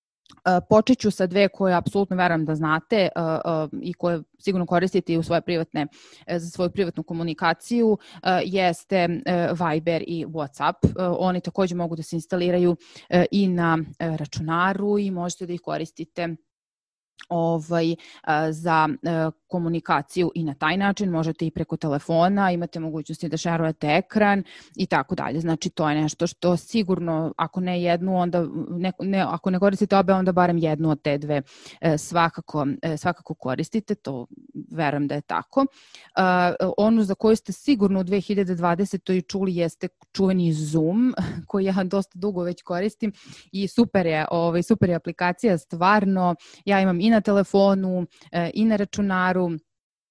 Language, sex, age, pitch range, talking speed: English, female, 20-39, 165-195 Hz, 145 wpm